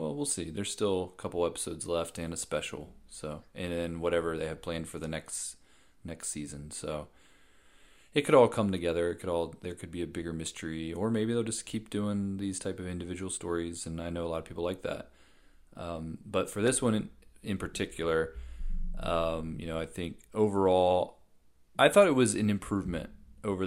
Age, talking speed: 30-49, 205 wpm